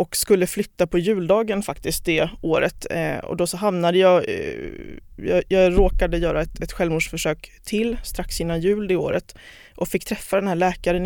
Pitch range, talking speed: 165-200 Hz, 175 wpm